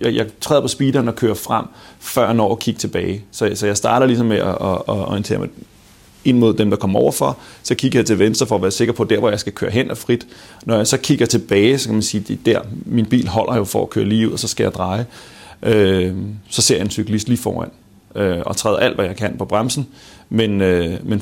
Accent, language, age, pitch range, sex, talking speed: Danish, English, 30-49, 100-115 Hz, male, 245 wpm